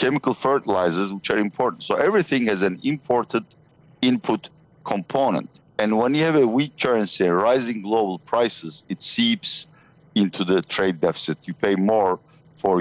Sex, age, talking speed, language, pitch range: male, 50-69, 150 wpm, English, 105-155 Hz